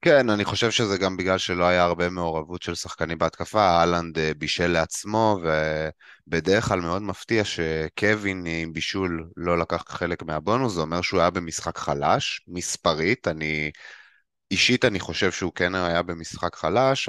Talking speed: 150 wpm